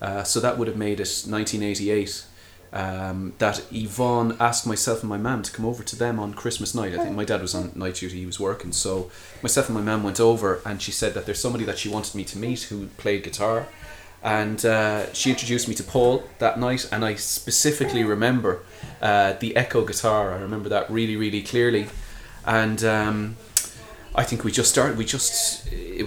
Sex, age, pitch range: male, 30-49, 100-125 Hz